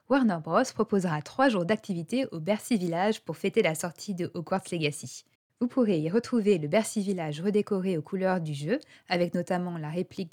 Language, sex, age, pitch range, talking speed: French, female, 20-39, 165-220 Hz, 185 wpm